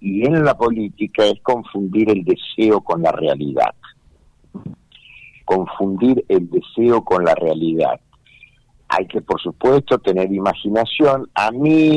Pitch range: 100-140 Hz